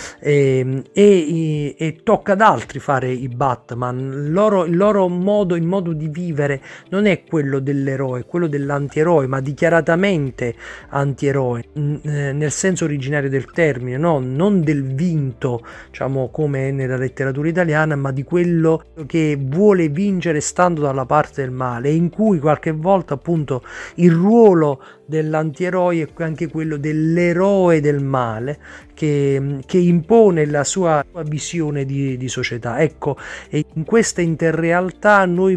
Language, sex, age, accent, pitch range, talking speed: Italian, male, 40-59, native, 140-180 Hz, 140 wpm